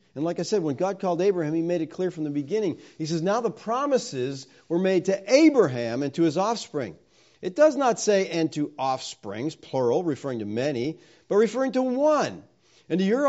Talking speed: 210 wpm